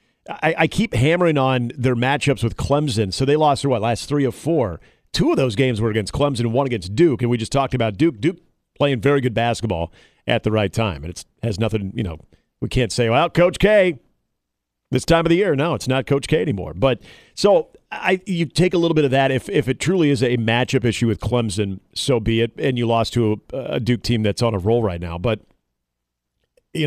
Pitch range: 105-130 Hz